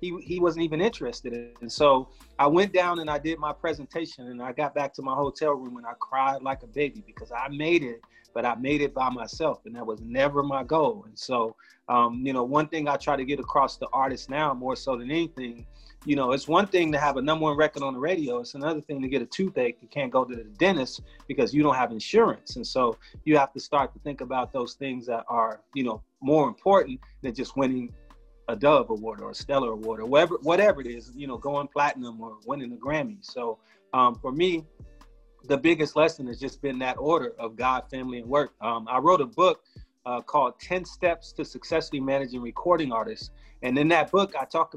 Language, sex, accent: English, male, American